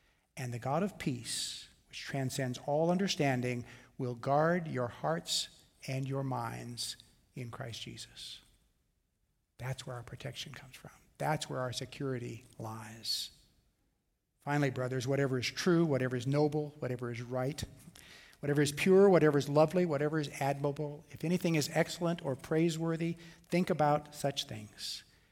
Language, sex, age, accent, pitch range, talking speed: English, male, 50-69, American, 125-155 Hz, 140 wpm